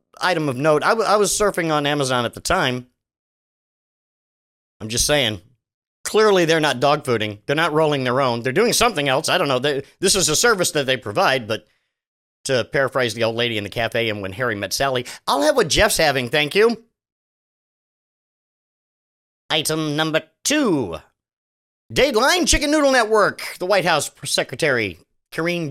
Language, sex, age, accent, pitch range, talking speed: English, male, 40-59, American, 125-170 Hz, 170 wpm